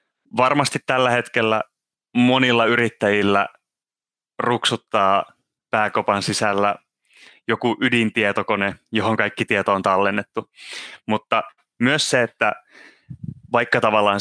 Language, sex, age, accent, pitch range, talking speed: Finnish, male, 20-39, native, 100-115 Hz, 90 wpm